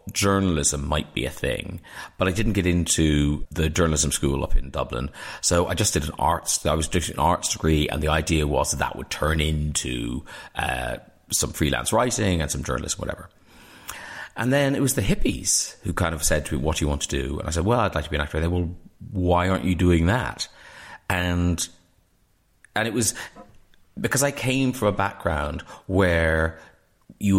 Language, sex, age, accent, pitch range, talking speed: English, male, 30-49, British, 75-95 Hz, 200 wpm